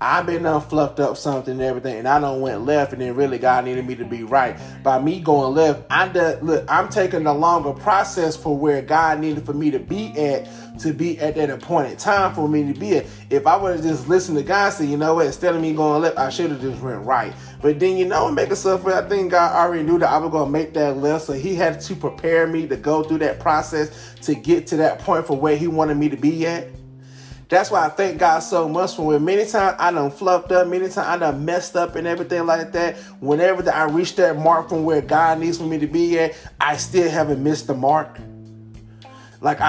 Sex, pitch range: male, 145-180 Hz